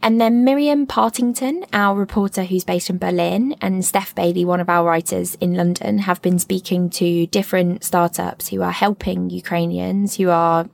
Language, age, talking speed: English, 20-39, 175 wpm